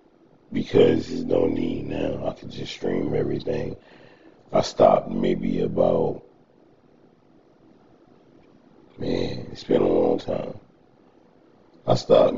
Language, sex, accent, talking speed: English, male, American, 105 wpm